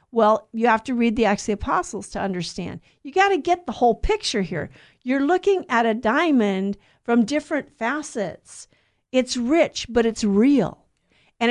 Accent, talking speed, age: American, 175 wpm, 50-69